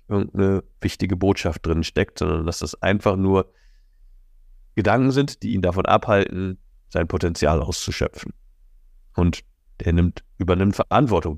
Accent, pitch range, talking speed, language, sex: German, 90-115 Hz, 120 wpm, German, male